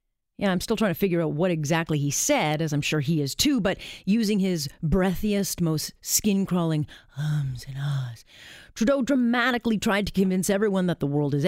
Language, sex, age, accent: English, female, 30-49, American